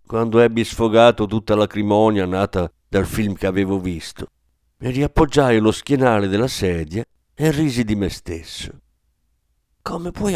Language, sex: Italian, male